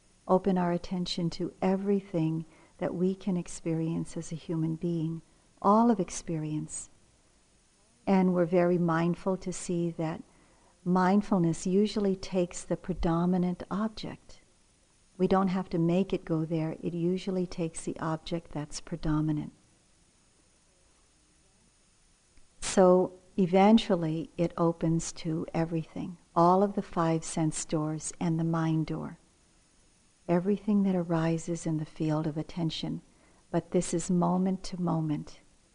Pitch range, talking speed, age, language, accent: 160-185 Hz, 125 wpm, 50-69, English, American